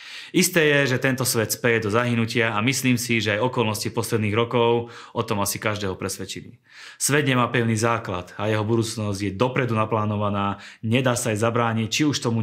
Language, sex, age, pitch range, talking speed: Slovak, male, 30-49, 105-130 Hz, 185 wpm